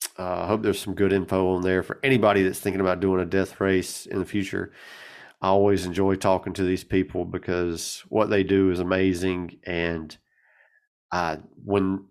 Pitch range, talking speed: 90-110 Hz, 180 wpm